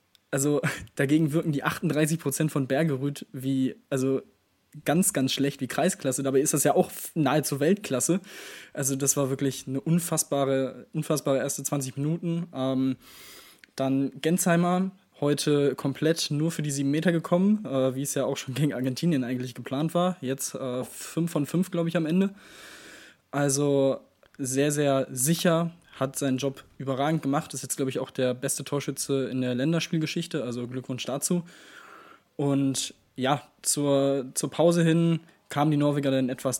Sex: male